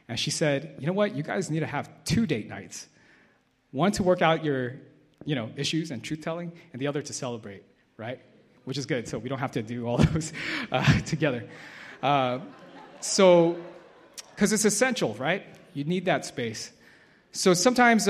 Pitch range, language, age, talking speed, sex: 120-170 Hz, English, 30-49, 180 wpm, male